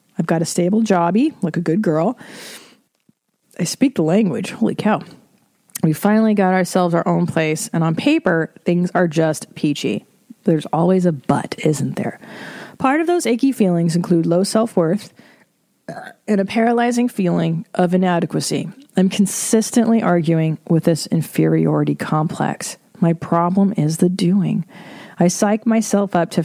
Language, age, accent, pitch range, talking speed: English, 30-49, American, 165-205 Hz, 150 wpm